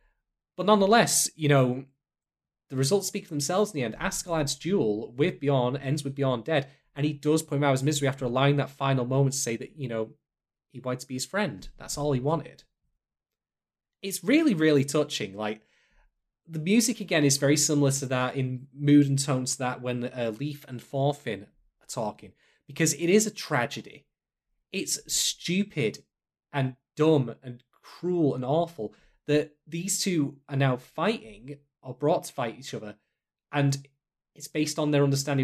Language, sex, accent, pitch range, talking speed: English, male, British, 130-155 Hz, 175 wpm